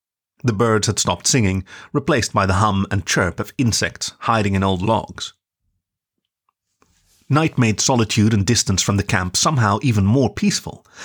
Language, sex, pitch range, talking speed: English, male, 95-120 Hz, 160 wpm